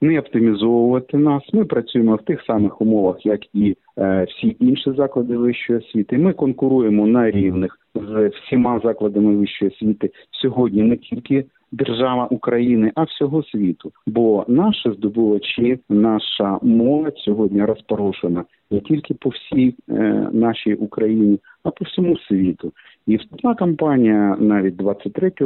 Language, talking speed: Ukrainian, 130 wpm